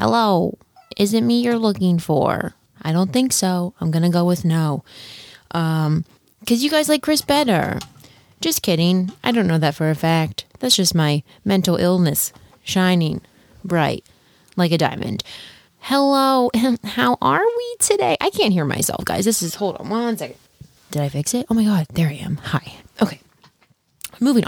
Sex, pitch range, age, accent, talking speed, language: female, 175-240 Hz, 20-39, American, 175 wpm, English